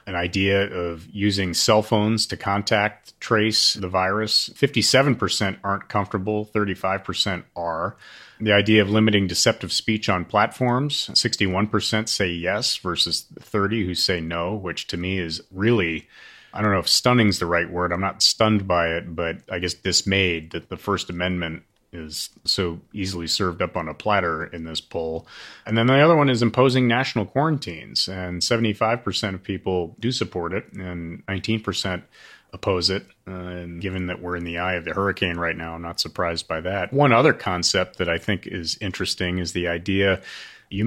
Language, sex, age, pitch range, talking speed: English, male, 30-49, 90-110 Hz, 175 wpm